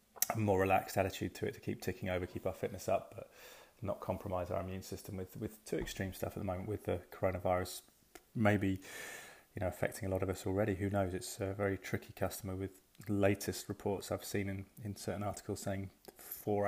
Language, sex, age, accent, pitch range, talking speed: English, male, 30-49, British, 95-105 Hz, 210 wpm